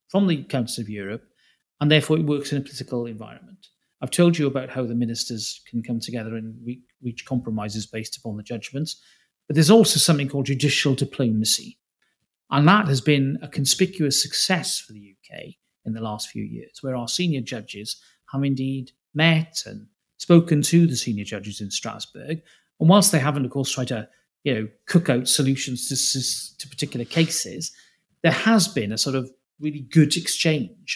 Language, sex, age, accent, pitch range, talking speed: English, male, 40-59, British, 120-155 Hz, 180 wpm